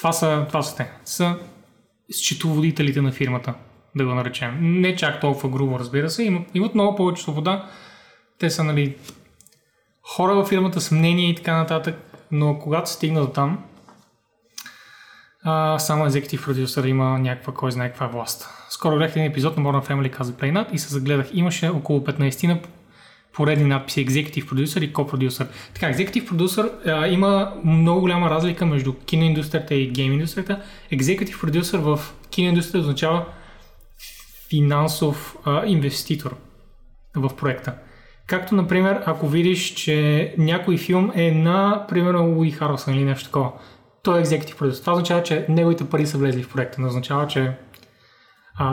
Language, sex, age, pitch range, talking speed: Bulgarian, male, 20-39, 135-175 Hz, 150 wpm